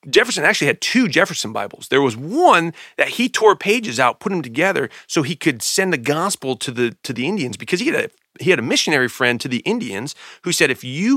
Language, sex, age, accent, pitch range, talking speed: English, male, 40-59, American, 120-165 Hz, 235 wpm